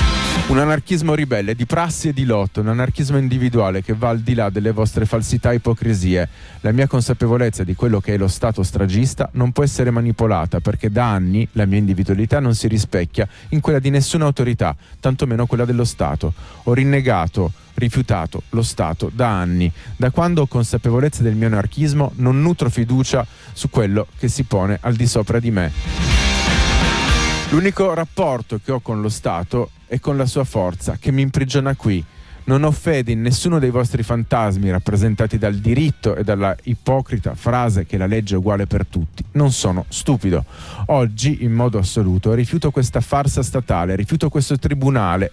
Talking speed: 175 wpm